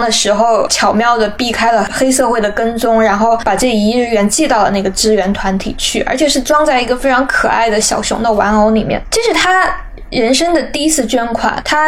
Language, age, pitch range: Chinese, 10-29, 215-265 Hz